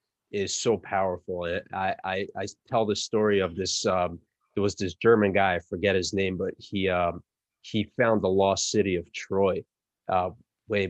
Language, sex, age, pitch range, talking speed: English, male, 30-49, 90-105 Hz, 180 wpm